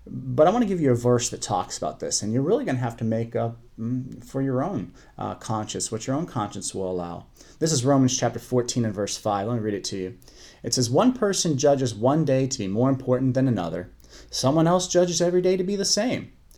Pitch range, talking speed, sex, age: 110-155 Hz, 245 wpm, male, 30-49